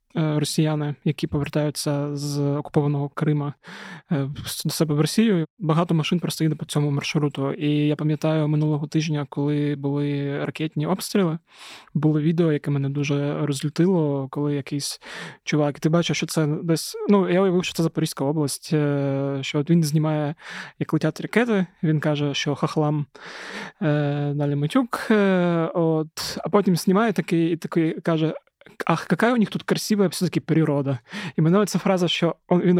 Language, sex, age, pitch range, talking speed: Ukrainian, male, 20-39, 145-170 Hz, 150 wpm